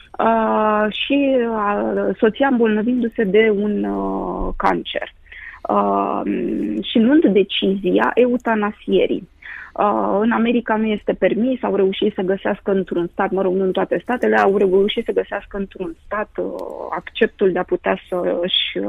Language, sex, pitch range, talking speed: Romanian, female, 185-230 Hz, 140 wpm